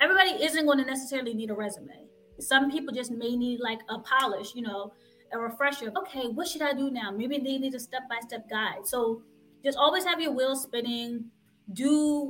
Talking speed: 190 wpm